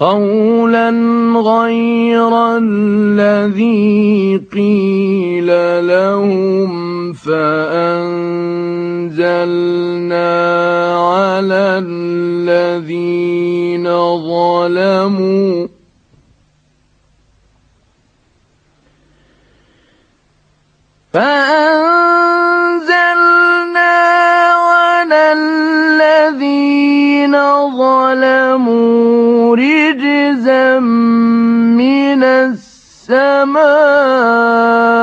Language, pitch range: Arabic, 190-285 Hz